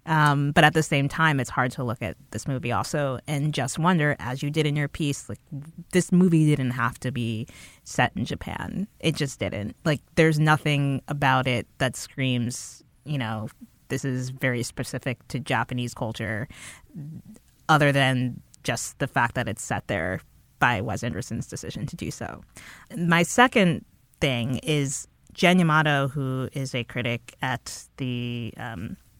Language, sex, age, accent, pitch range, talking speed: English, female, 20-39, American, 125-160 Hz, 165 wpm